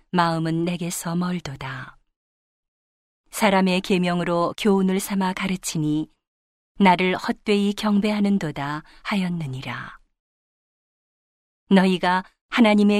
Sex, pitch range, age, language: female, 160-200 Hz, 40-59, Korean